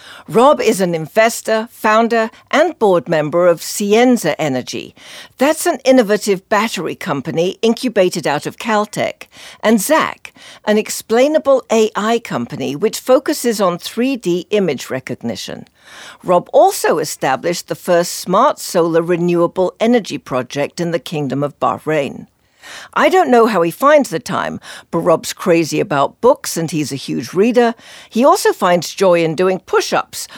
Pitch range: 165-225 Hz